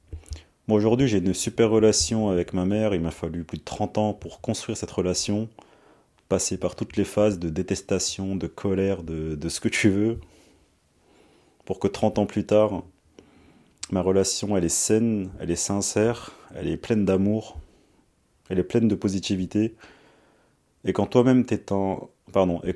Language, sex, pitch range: French, male, 90-110 Hz